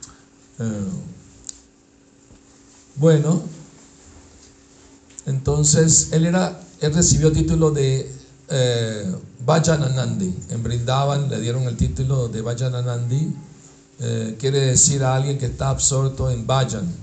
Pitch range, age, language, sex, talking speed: 125-150 Hz, 60-79, Spanish, male, 100 wpm